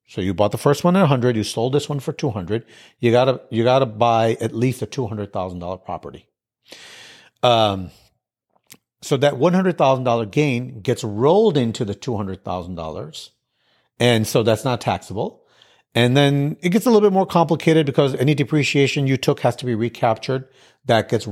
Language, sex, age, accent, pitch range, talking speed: English, male, 40-59, American, 110-140 Hz, 170 wpm